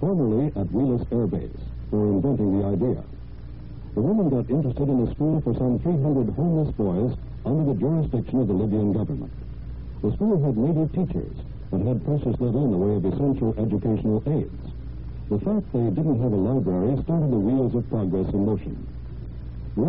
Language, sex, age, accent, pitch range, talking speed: English, male, 60-79, American, 100-140 Hz, 180 wpm